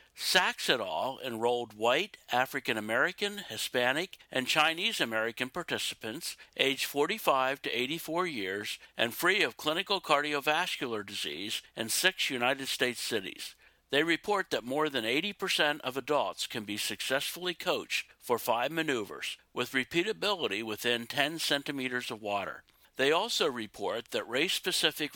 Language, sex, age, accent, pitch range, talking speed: English, male, 60-79, American, 120-165 Hz, 125 wpm